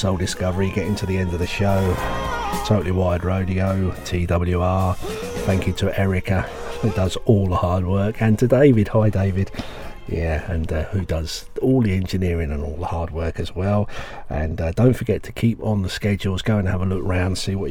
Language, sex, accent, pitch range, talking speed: English, male, British, 90-110 Hz, 205 wpm